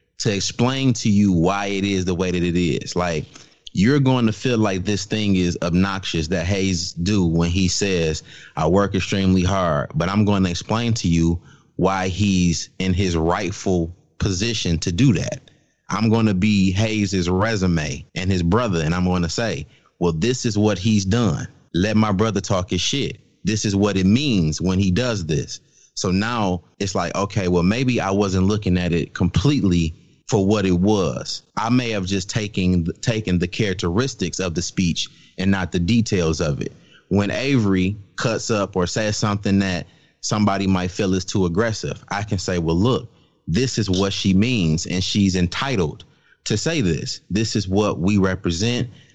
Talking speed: 185 wpm